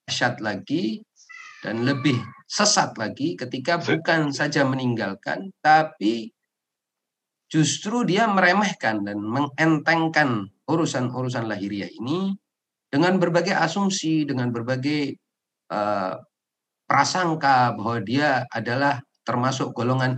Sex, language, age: male, Indonesian, 50-69